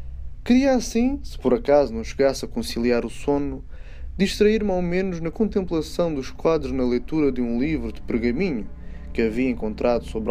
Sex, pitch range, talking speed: male, 120-200 Hz, 170 wpm